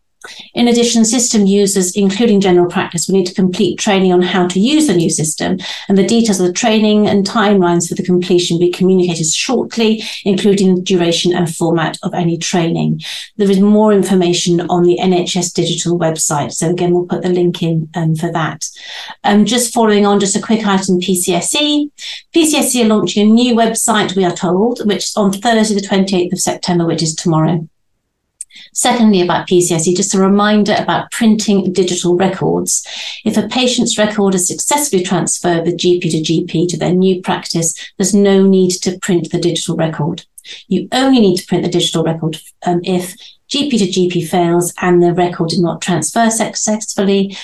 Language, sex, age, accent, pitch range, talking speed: English, female, 50-69, British, 175-205 Hz, 180 wpm